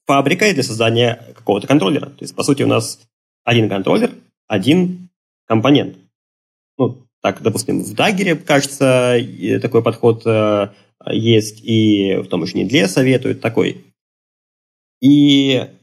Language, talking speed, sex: Russian, 120 wpm, male